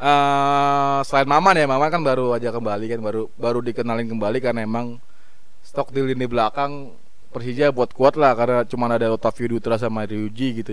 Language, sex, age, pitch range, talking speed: Indonesian, male, 20-39, 115-150 Hz, 180 wpm